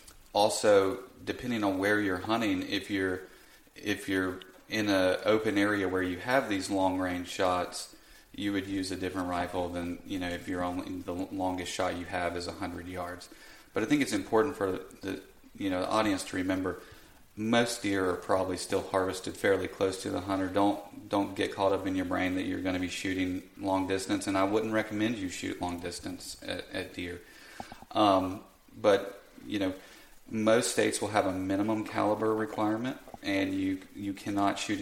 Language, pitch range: English, 95-105 Hz